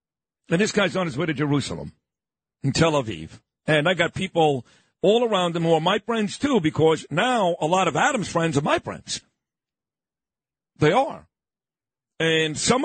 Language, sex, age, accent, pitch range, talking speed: English, male, 50-69, American, 155-215 Hz, 175 wpm